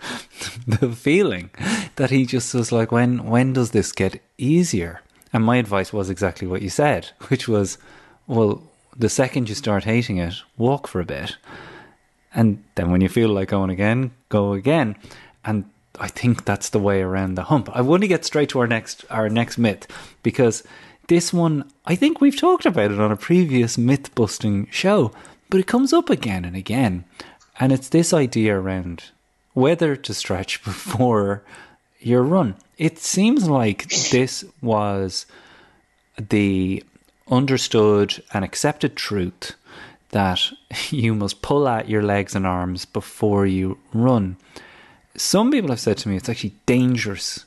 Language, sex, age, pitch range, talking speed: English, male, 30-49, 100-130 Hz, 160 wpm